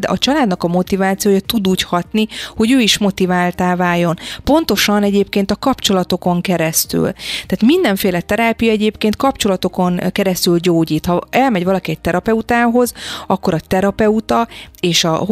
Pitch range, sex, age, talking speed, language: 175-215 Hz, female, 30-49, 135 wpm, Hungarian